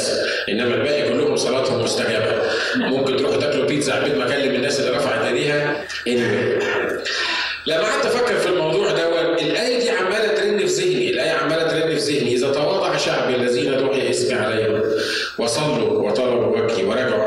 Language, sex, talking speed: Arabic, male, 160 wpm